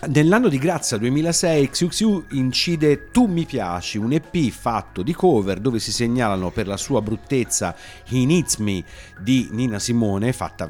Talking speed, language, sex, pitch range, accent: 165 wpm, Italian, male, 100-140 Hz, native